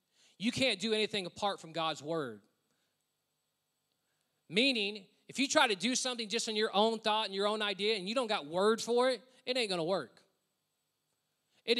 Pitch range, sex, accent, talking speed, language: 200-245 Hz, male, American, 190 wpm, English